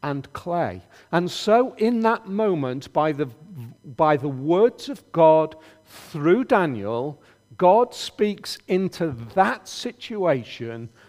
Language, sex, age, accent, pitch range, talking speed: English, male, 50-69, British, 105-170 Hz, 115 wpm